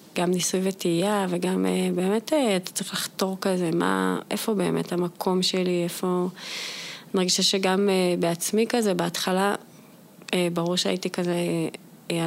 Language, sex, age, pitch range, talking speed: Hebrew, female, 20-39, 170-200 Hz, 140 wpm